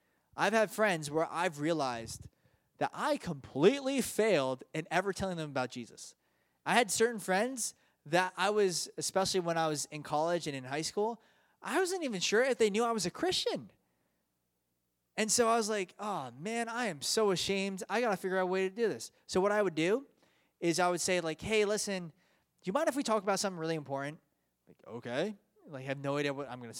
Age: 20-39